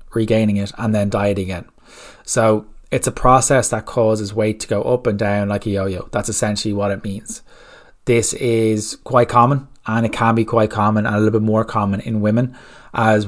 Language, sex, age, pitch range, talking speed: English, male, 20-39, 105-115 Hz, 205 wpm